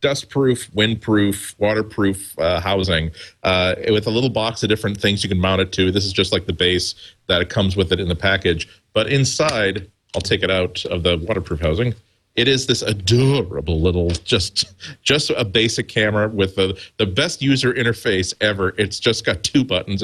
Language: English